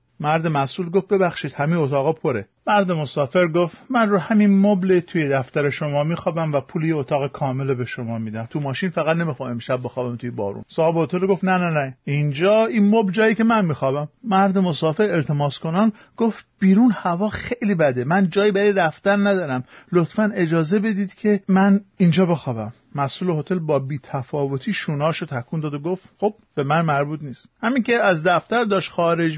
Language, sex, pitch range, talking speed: Persian, male, 145-200 Hz, 180 wpm